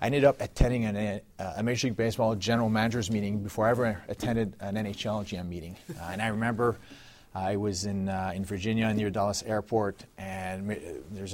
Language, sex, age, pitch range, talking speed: English, male, 30-49, 100-115 Hz, 200 wpm